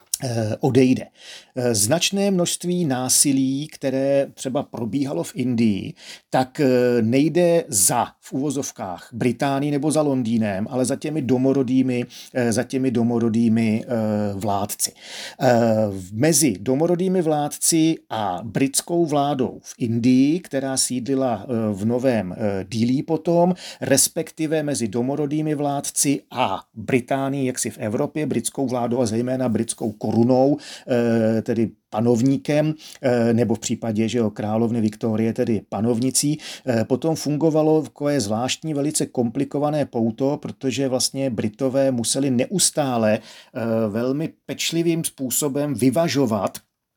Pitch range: 120-145 Hz